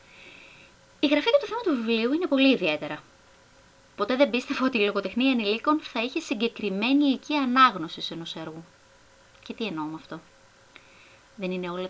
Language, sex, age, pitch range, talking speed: Greek, female, 20-39, 185-285 Hz, 160 wpm